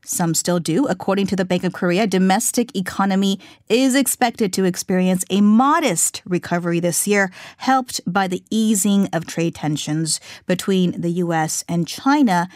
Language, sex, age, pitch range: Korean, female, 30-49, 175-220 Hz